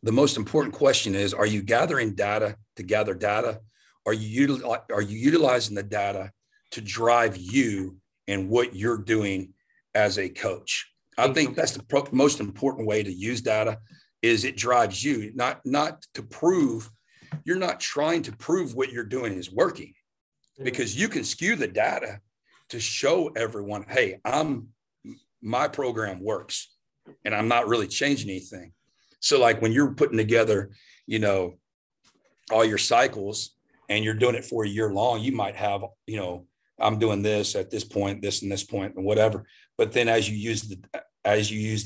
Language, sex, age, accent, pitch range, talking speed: English, male, 40-59, American, 100-115 Hz, 175 wpm